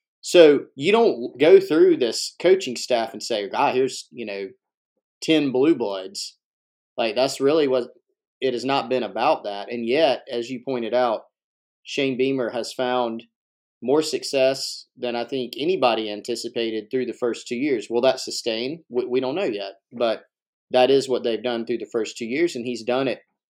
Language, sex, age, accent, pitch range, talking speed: English, male, 30-49, American, 115-135 Hz, 185 wpm